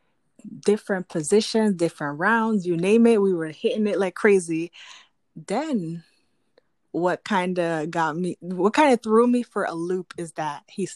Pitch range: 165-240 Hz